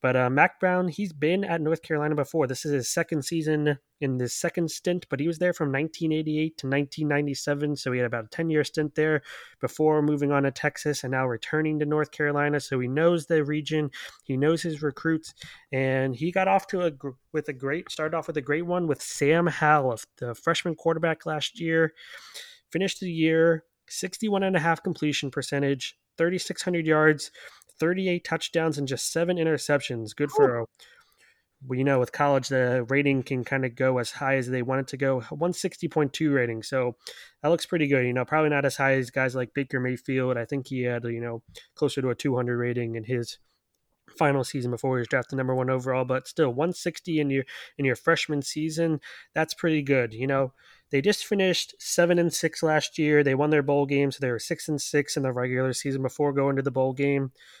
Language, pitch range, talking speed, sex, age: English, 130-160 Hz, 210 wpm, male, 20-39